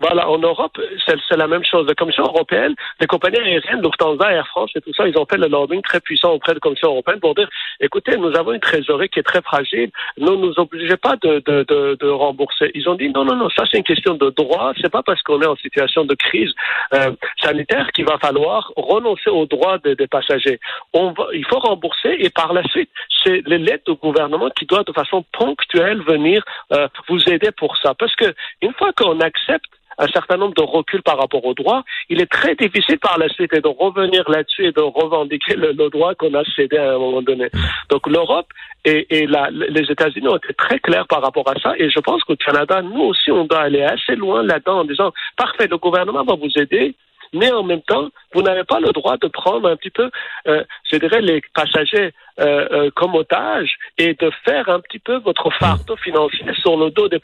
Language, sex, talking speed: French, male, 230 wpm